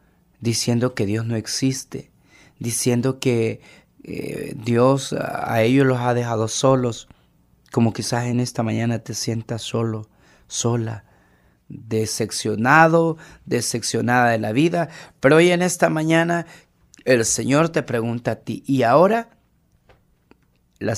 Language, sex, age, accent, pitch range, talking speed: Spanish, male, 40-59, Mexican, 115-170 Hz, 125 wpm